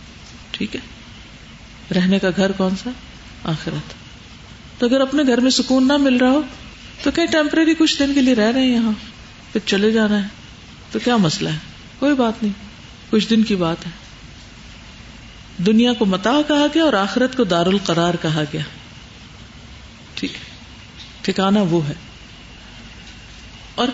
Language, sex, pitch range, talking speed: Urdu, female, 185-255 Hz, 150 wpm